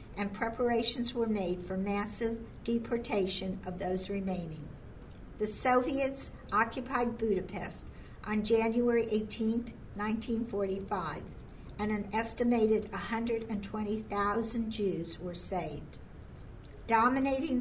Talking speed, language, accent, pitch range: 90 wpm, English, American, 195-235 Hz